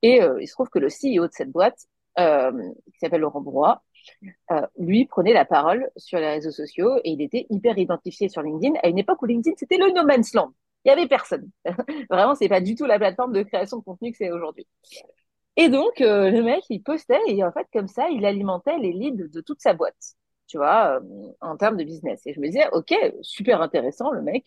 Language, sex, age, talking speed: French, female, 40-59, 235 wpm